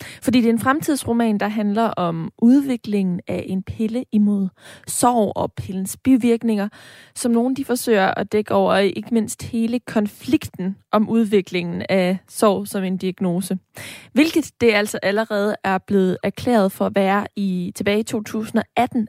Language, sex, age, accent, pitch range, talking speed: Danish, female, 20-39, native, 200-235 Hz, 150 wpm